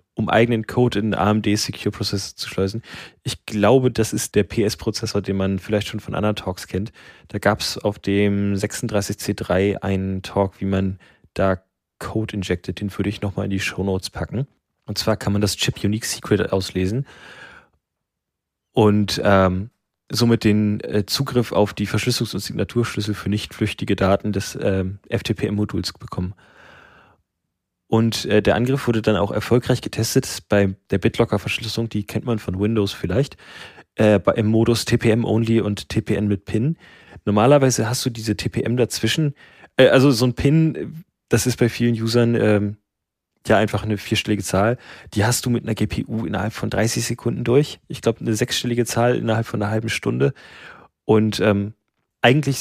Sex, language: male, German